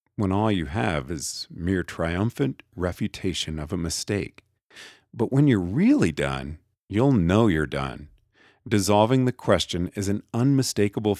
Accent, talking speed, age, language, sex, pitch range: American, 140 wpm, 50-69, English, male, 85-120 Hz